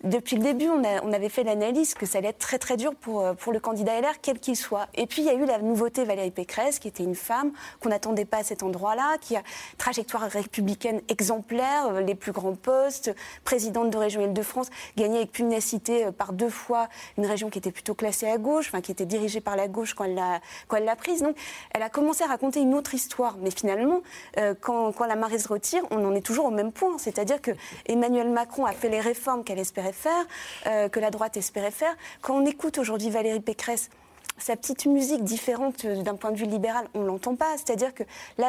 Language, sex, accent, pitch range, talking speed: French, female, French, 210-255 Hz, 230 wpm